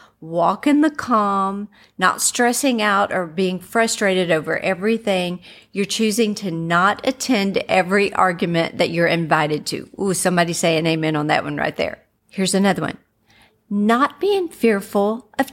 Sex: female